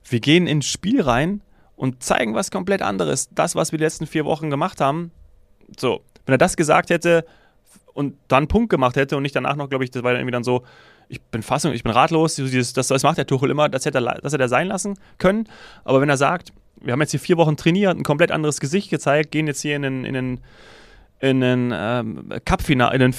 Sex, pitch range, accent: male, 130-165 Hz, German